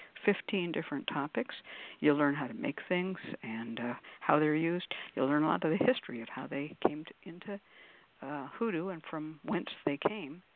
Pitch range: 145-195 Hz